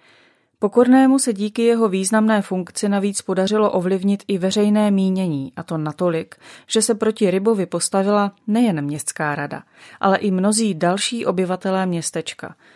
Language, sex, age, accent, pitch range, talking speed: Czech, female, 30-49, native, 170-205 Hz, 135 wpm